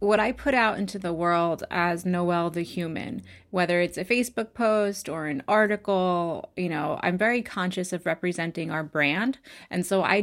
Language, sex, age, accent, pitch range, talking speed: English, female, 30-49, American, 175-210 Hz, 180 wpm